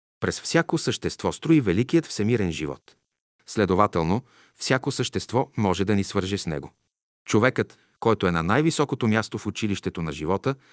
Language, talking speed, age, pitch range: Bulgarian, 145 wpm, 40-59, 95-125 Hz